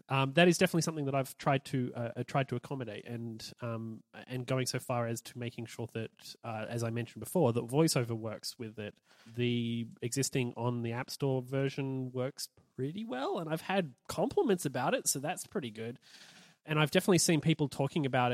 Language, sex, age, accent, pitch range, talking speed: English, male, 30-49, Australian, 120-140 Hz, 200 wpm